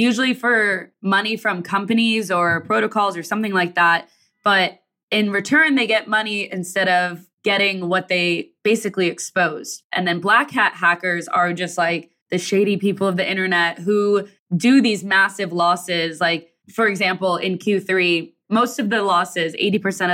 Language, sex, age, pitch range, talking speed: English, female, 20-39, 175-210 Hz, 160 wpm